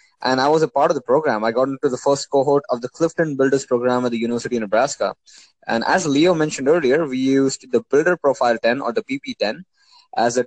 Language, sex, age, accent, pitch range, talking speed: English, male, 20-39, Indian, 125-155 Hz, 230 wpm